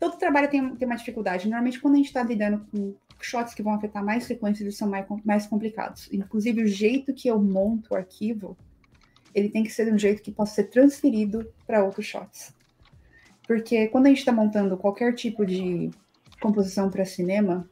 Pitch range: 195-235 Hz